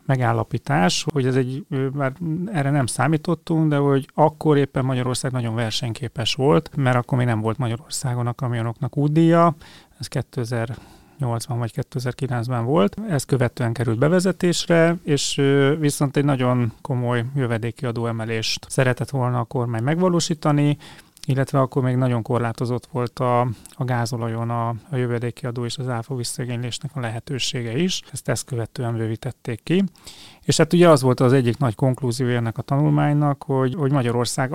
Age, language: 30-49, Hungarian